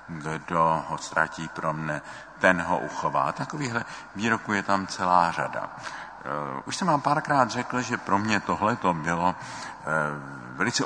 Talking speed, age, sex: 135 wpm, 50-69, male